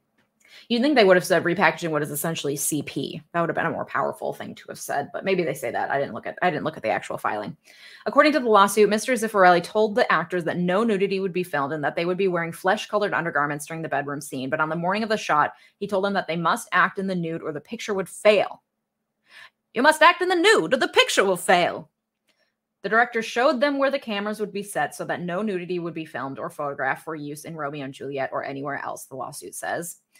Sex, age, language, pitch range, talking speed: female, 20-39, English, 165-215 Hz, 255 wpm